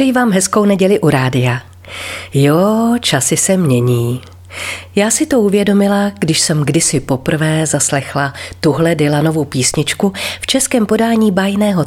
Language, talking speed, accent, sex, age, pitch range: Czech, 130 wpm, native, female, 40-59, 130-200 Hz